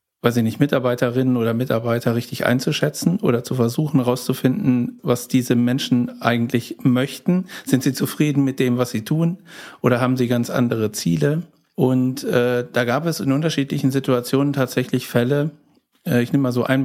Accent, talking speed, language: German, 165 wpm, German